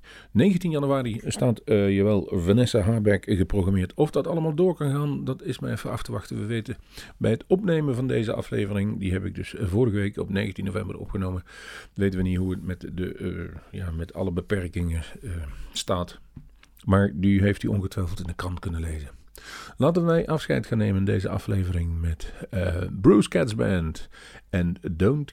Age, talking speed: 50-69, 175 wpm